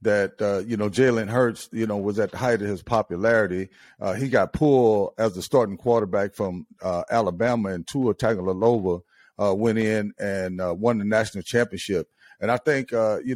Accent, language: American, English